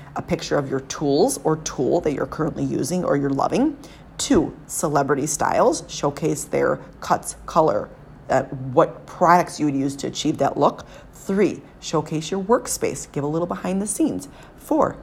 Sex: female